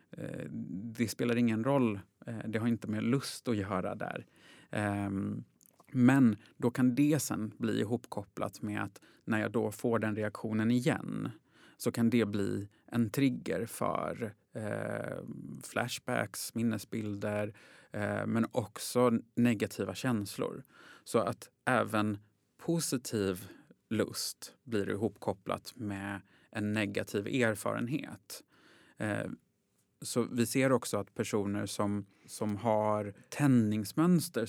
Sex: male